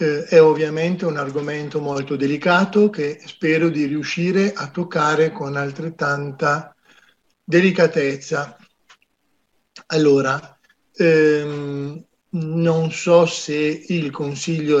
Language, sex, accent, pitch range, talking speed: Italian, male, native, 135-165 Hz, 90 wpm